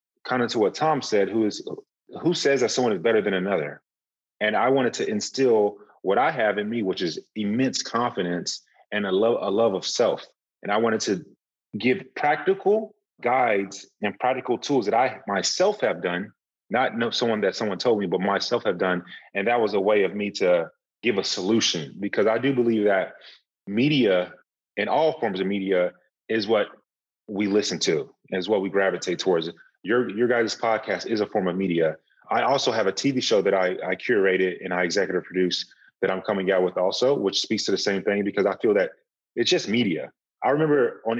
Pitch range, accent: 95-135 Hz, American